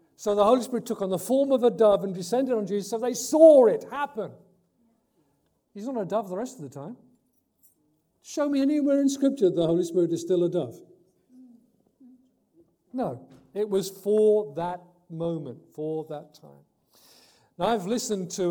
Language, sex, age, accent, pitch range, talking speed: English, male, 50-69, British, 150-210 Hz, 175 wpm